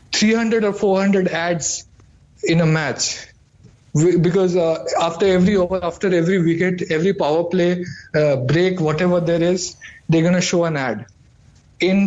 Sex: male